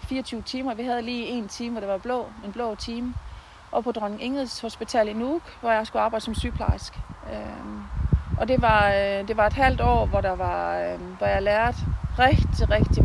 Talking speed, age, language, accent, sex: 200 wpm, 40-59, Danish, native, female